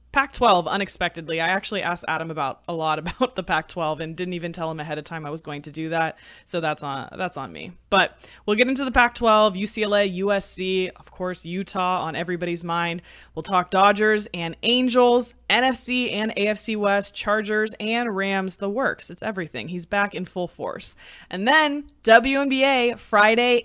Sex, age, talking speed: female, 20-39, 180 wpm